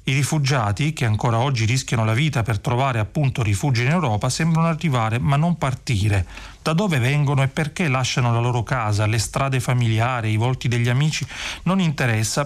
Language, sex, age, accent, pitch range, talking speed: Italian, male, 40-59, native, 115-150 Hz, 180 wpm